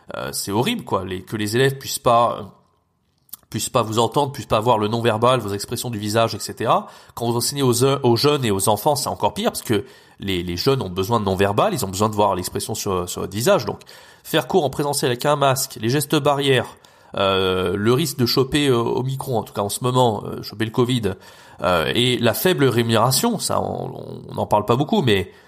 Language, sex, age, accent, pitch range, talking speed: French, male, 30-49, French, 110-145 Hz, 230 wpm